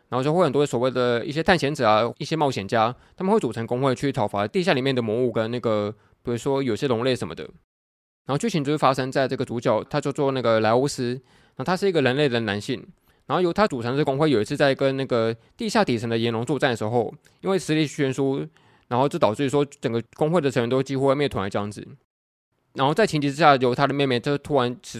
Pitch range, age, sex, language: 120-145 Hz, 20-39, male, Chinese